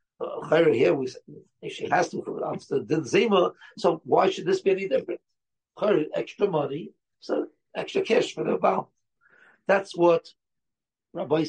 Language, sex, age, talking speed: English, male, 60-79, 145 wpm